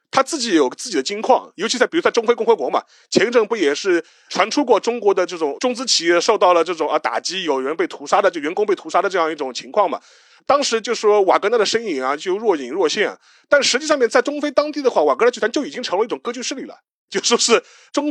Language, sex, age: Chinese, male, 30-49